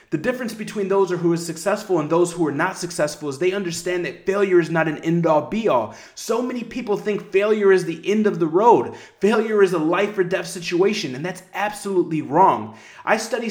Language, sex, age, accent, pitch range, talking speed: English, male, 30-49, American, 165-205 Hz, 220 wpm